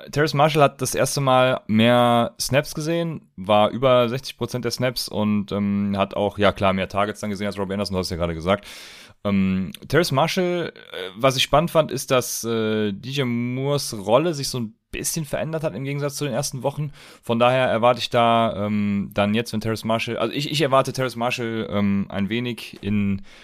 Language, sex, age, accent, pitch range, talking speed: German, male, 30-49, German, 100-125 Hz, 200 wpm